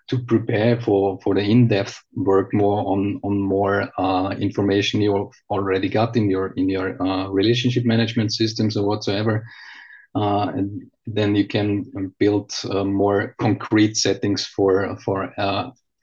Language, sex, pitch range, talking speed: English, male, 100-120 Hz, 150 wpm